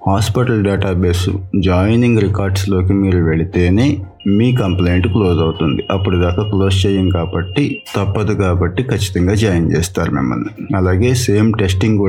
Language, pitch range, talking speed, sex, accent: Telugu, 90-105 Hz, 100 wpm, male, native